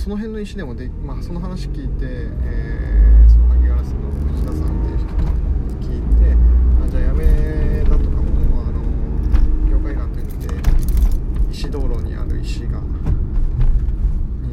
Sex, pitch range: male, 65-75 Hz